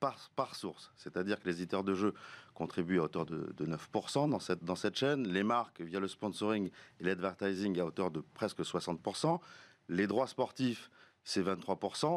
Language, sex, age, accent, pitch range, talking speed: French, male, 40-59, French, 95-130 Hz, 180 wpm